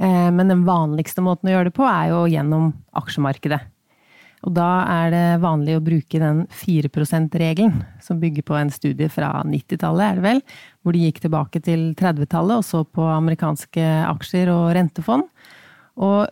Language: English